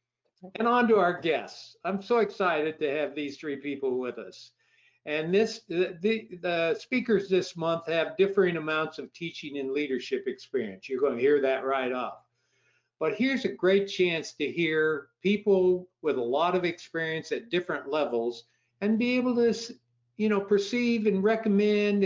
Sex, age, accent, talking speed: male, 60-79, American, 170 wpm